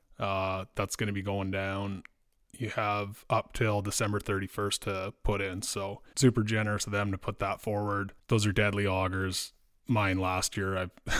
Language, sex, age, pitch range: English, male, 20-39, 95-110 Hz